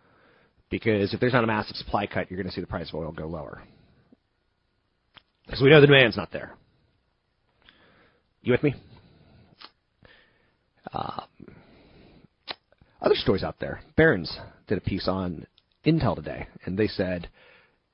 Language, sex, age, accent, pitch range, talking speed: English, male, 30-49, American, 95-120 Hz, 145 wpm